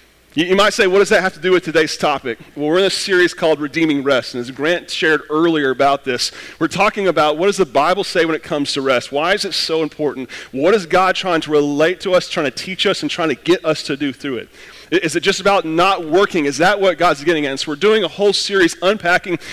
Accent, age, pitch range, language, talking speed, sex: American, 40-59, 155-205 Hz, English, 265 wpm, male